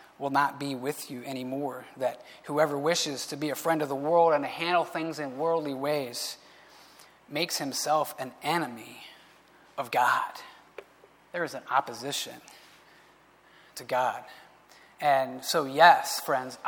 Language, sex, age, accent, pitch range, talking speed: English, male, 30-49, American, 145-185 Hz, 140 wpm